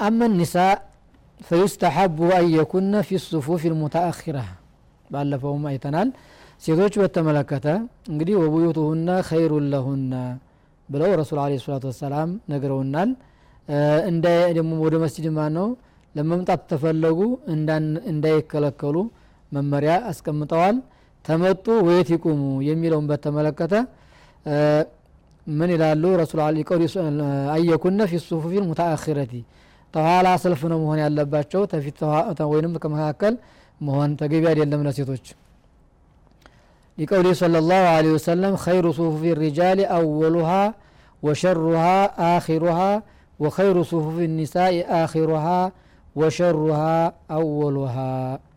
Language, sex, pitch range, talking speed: Amharic, male, 145-175 Hz, 100 wpm